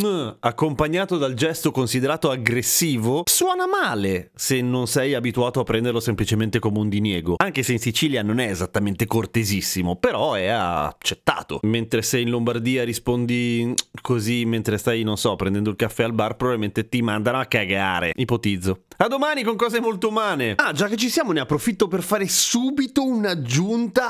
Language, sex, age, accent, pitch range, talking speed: Italian, male, 30-49, native, 120-200 Hz, 165 wpm